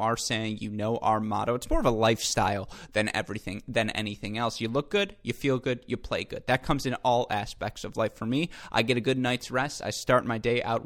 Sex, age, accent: male, 20-39, American